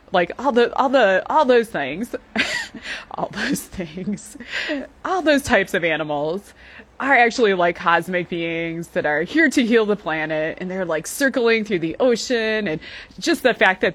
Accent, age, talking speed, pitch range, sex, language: American, 20-39, 170 wpm, 175-250 Hz, female, English